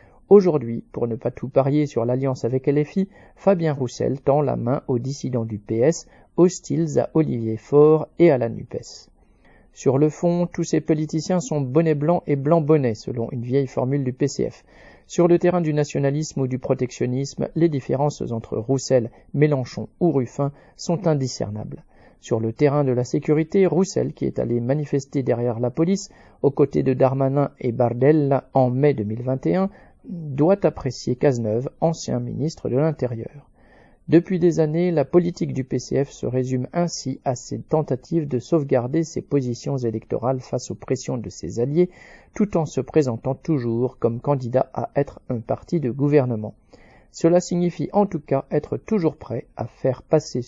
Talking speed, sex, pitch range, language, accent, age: 165 wpm, male, 125-160 Hz, French, French, 40-59